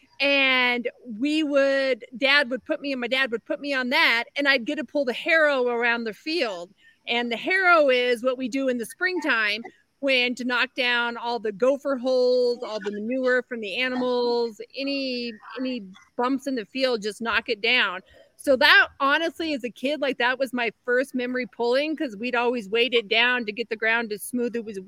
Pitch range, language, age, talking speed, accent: 240-285 Hz, English, 40-59, 200 wpm, American